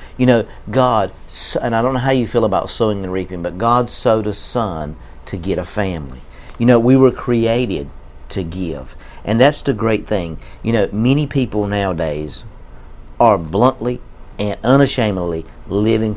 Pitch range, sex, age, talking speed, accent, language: 95-125 Hz, male, 50-69, 165 wpm, American, English